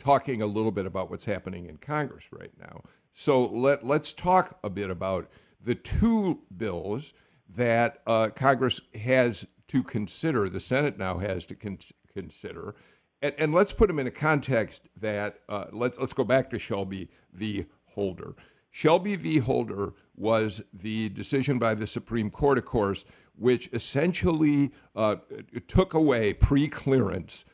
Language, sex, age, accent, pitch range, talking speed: English, male, 50-69, American, 105-145 Hz, 155 wpm